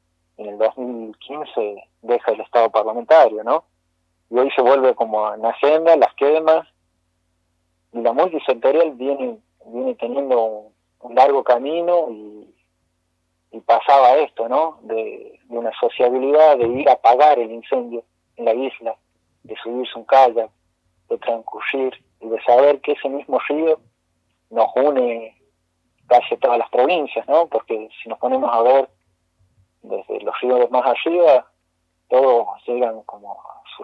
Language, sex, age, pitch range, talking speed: Spanish, male, 40-59, 95-135 Hz, 135 wpm